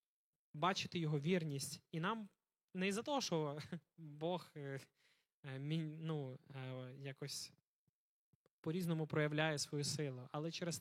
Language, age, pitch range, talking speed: Ukrainian, 20-39, 155-200 Hz, 100 wpm